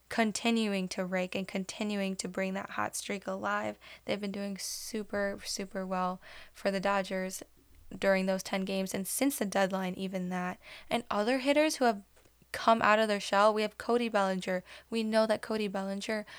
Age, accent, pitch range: 10-29, American, 190-210 Hz